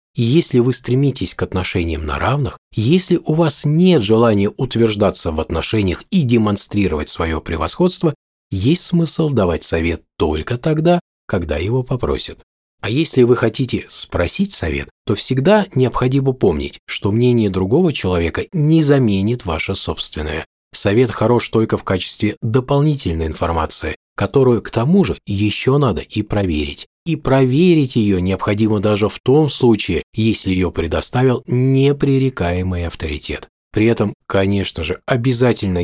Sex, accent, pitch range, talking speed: male, native, 90-130 Hz, 130 wpm